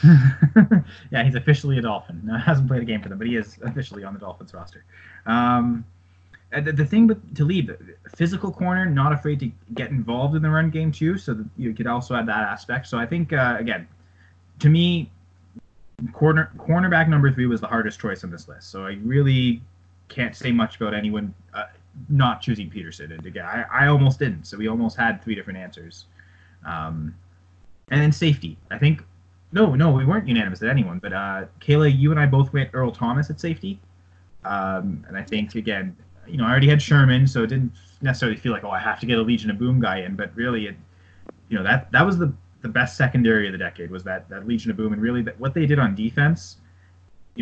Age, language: 20-39, English